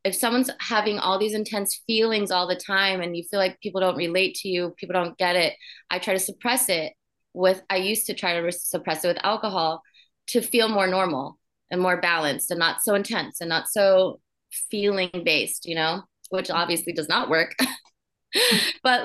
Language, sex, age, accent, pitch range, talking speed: English, female, 20-39, American, 170-210 Hz, 195 wpm